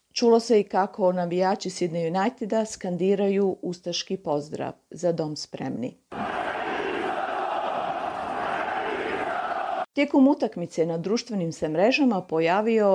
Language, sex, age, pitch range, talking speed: Croatian, female, 40-59, 170-225 Hz, 90 wpm